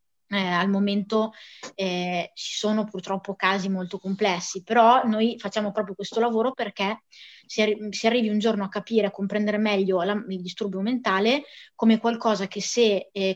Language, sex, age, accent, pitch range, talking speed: Italian, female, 20-39, native, 190-215 Hz, 155 wpm